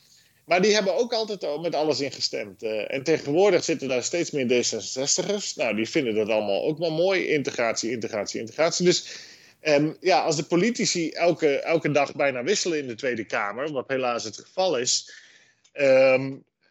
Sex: male